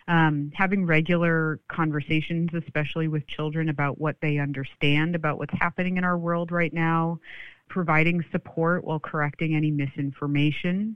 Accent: American